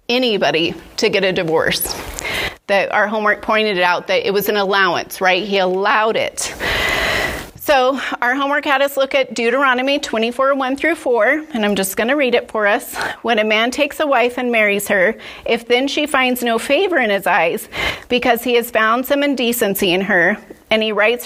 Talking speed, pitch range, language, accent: 195 wpm, 220-270 Hz, English, American